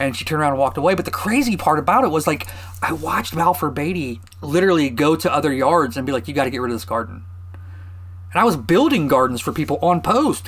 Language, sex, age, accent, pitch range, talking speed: English, male, 30-49, American, 105-160 Hz, 245 wpm